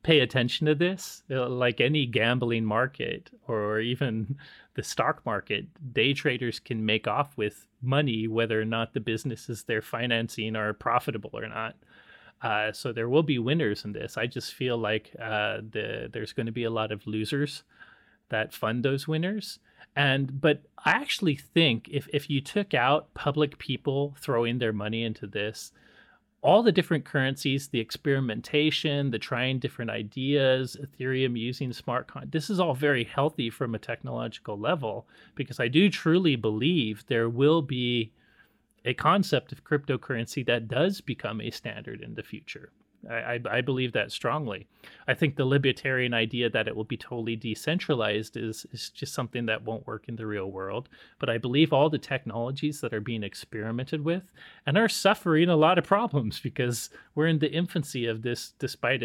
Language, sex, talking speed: English, male, 170 wpm